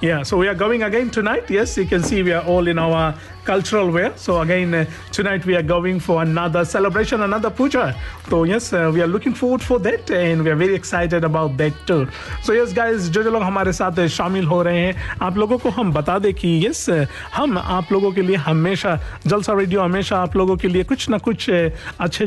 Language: Hindi